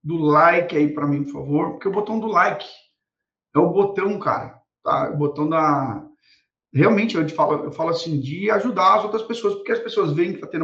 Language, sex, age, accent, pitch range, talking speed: Portuguese, male, 40-59, Brazilian, 160-230 Hz, 220 wpm